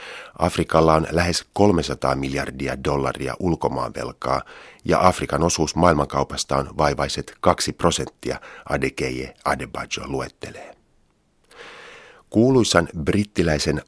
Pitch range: 70-85 Hz